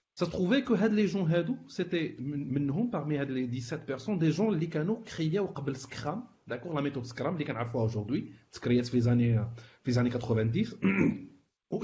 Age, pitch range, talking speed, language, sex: 40-59, 125-165 Hz, 190 wpm, Arabic, male